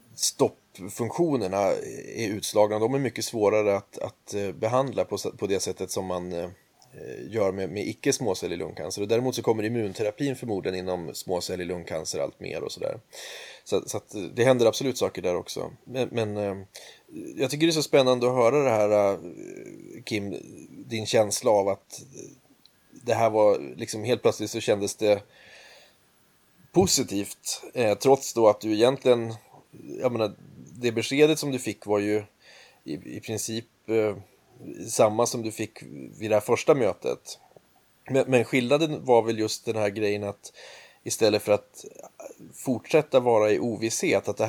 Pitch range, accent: 105-130 Hz, native